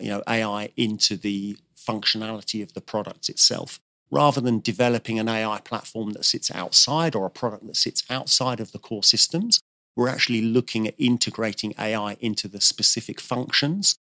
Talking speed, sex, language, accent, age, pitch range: 165 wpm, male, English, British, 40-59, 105-125 Hz